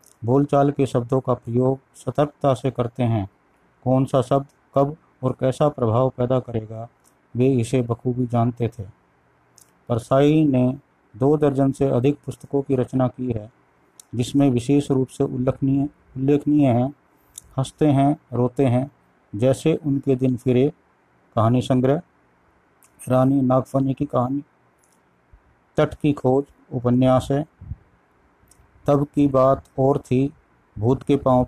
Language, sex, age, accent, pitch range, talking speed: Hindi, male, 50-69, native, 120-140 Hz, 130 wpm